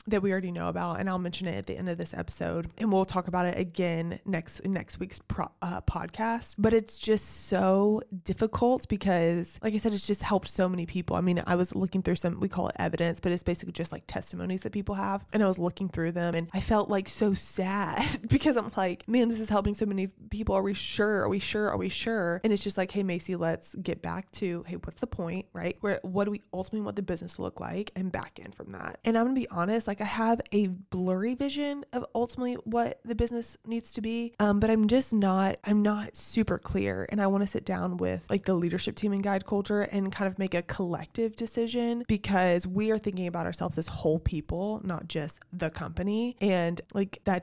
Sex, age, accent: female, 20-39, American